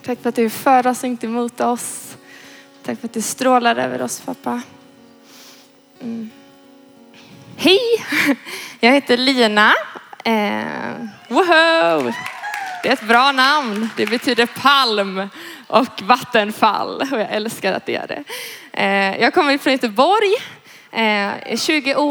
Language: Swedish